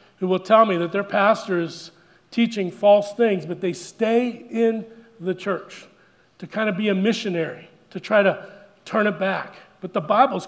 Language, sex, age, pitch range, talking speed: English, male, 40-59, 185-220 Hz, 185 wpm